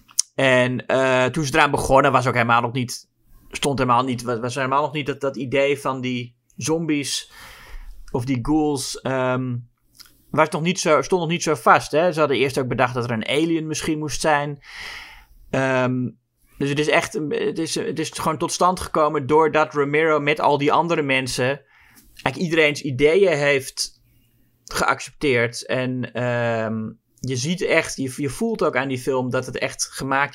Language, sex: Dutch, male